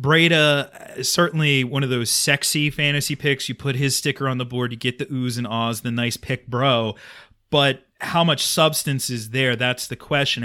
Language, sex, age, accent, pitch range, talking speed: English, male, 30-49, American, 125-150 Hz, 195 wpm